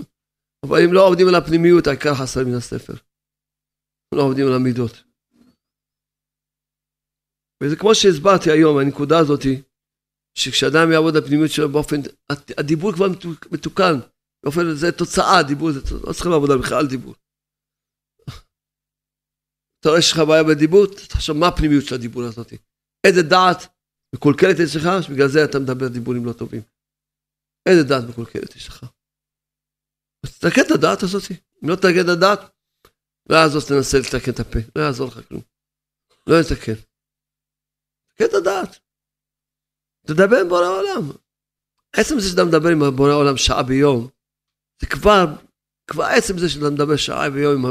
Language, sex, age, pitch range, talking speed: Hebrew, male, 50-69, 130-175 Hz, 140 wpm